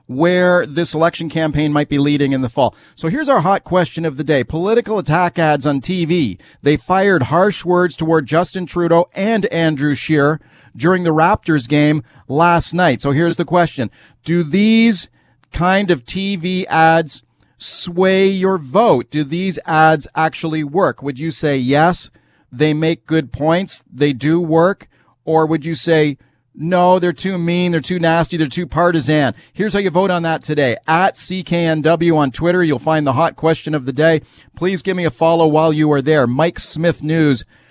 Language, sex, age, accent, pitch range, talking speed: English, male, 40-59, American, 145-175 Hz, 180 wpm